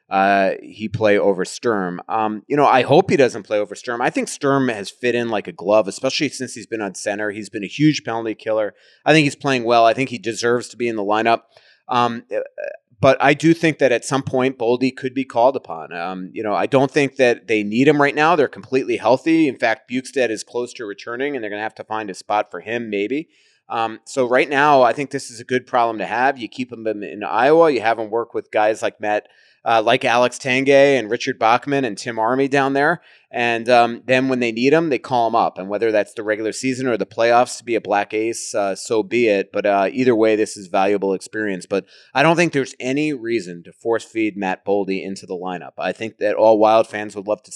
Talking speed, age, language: 250 wpm, 30-49, English